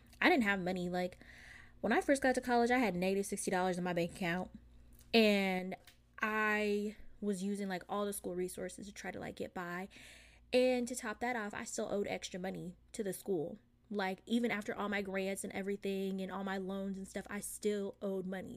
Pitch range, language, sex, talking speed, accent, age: 190-220 Hz, English, female, 210 wpm, American, 20-39